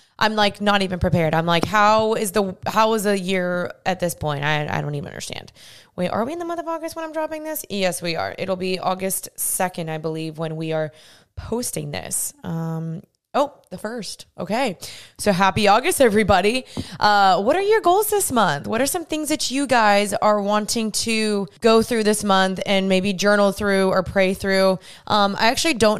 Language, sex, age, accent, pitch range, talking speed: English, female, 20-39, American, 185-225 Hz, 205 wpm